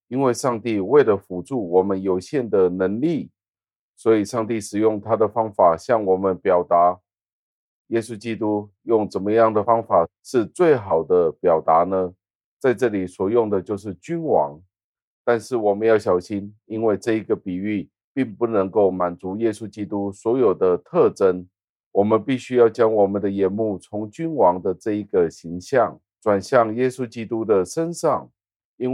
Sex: male